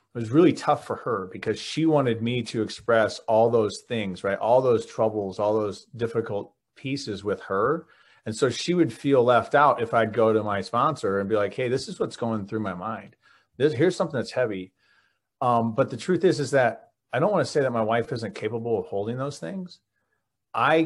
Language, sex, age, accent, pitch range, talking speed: English, male, 30-49, American, 100-120 Hz, 220 wpm